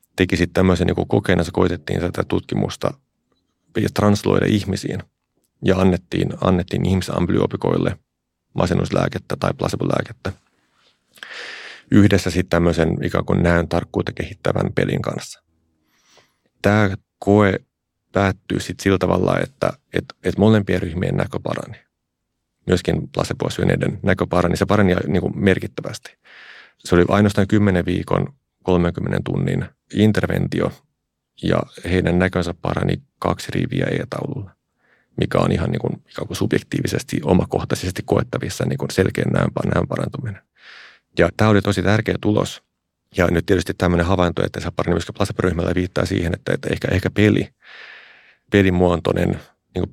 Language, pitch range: Finnish, 85-100 Hz